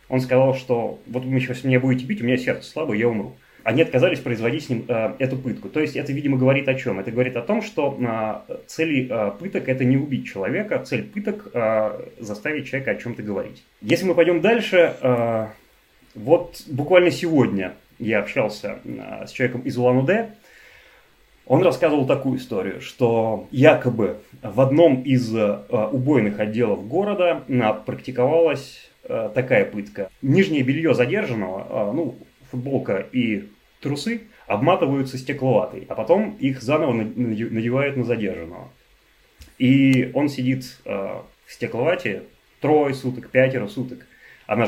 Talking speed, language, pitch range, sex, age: 150 wpm, Russian, 115-140 Hz, male, 30-49